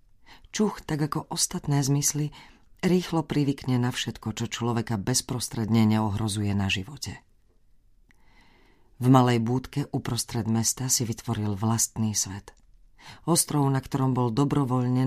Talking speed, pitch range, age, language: 115 wpm, 105-140 Hz, 40-59, Slovak